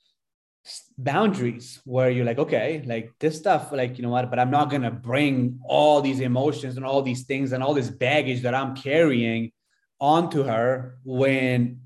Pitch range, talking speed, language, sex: 115-140 Hz, 170 wpm, English, male